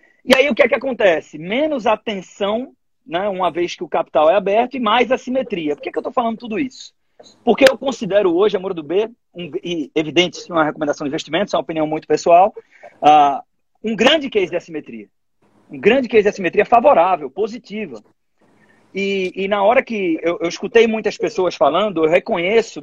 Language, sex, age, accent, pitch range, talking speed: Portuguese, male, 40-59, Brazilian, 175-235 Hz, 200 wpm